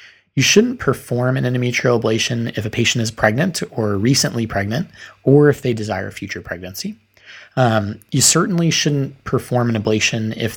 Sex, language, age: male, English, 20-39